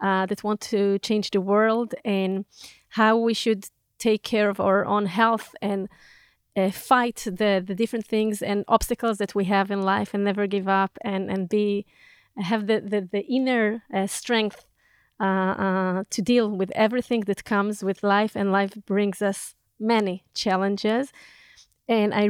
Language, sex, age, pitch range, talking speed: Hebrew, female, 20-39, 195-225 Hz, 170 wpm